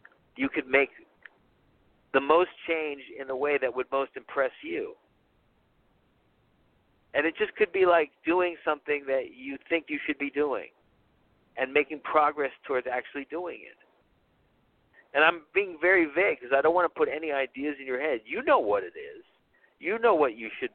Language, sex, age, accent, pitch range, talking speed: English, male, 50-69, American, 140-195 Hz, 180 wpm